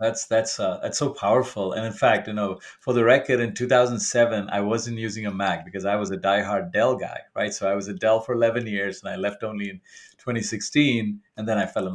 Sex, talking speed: male, 240 wpm